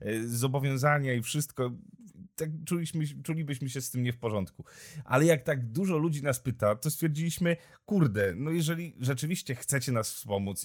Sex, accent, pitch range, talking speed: male, native, 120-150 Hz, 160 wpm